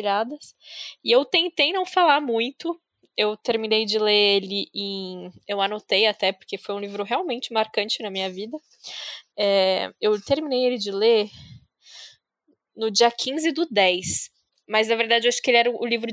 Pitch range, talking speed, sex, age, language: 205-250 Hz, 165 wpm, female, 10-29, Portuguese